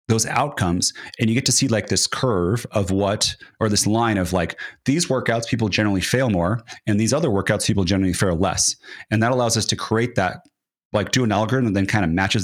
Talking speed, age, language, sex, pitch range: 225 wpm, 30-49, English, male, 95-120 Hz